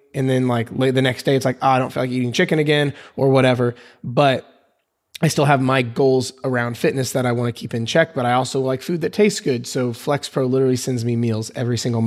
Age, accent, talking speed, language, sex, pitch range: 20-39, American, 255 wpm, English, male, 125-150 Hz